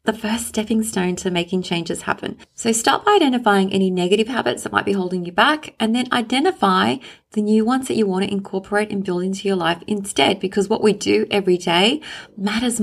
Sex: female